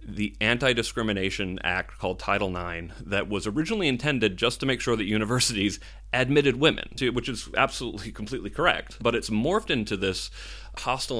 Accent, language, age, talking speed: American, English, 30-49, 155 wpm